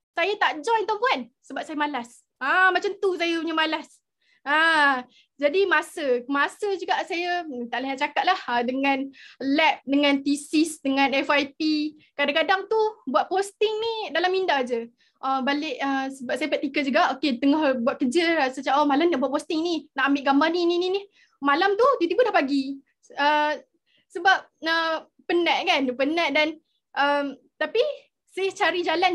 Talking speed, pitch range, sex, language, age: 170 wpm, 275-360 Hz, female, Malay, 20-39